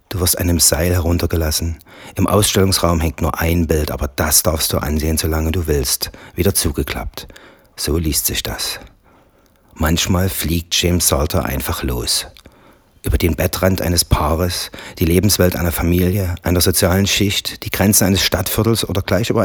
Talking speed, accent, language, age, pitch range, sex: 155 wpm, German, German, 40-59, 75-95 Hz, male